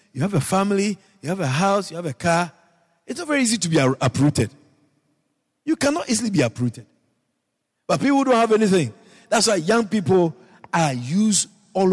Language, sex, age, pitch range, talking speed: English, male, 50-69, 150-220 Hz, 180 wpm